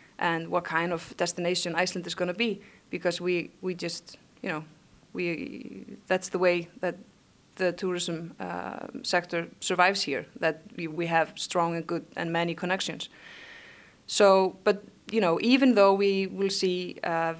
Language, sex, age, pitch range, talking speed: English, female, 20-39, 165-190 Hz, 160 wpm